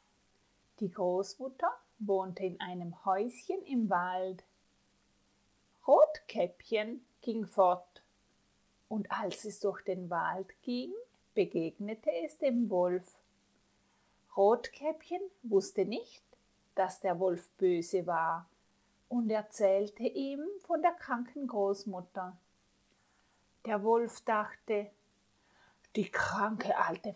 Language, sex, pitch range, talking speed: Italian, female, 185-240 Hz, 95 wpm